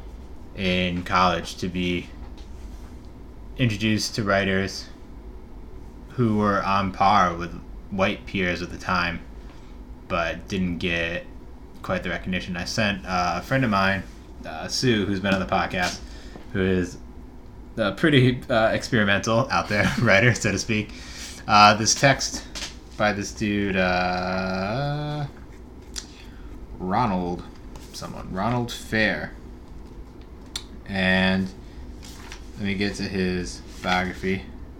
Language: English